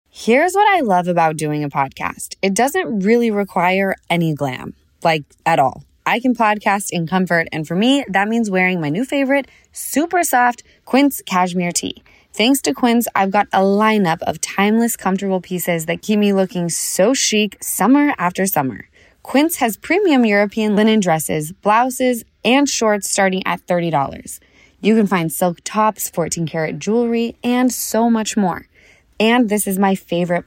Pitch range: 180-235 Hz